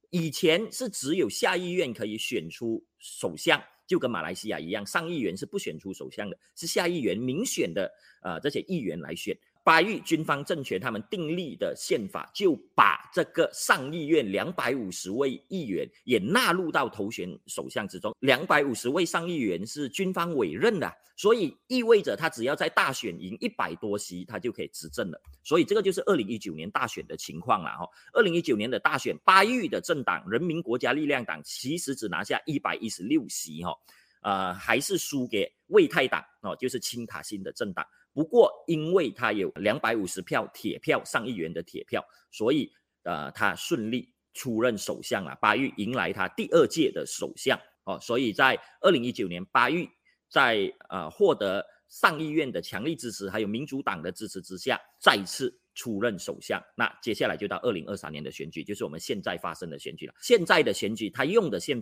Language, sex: Chinese, male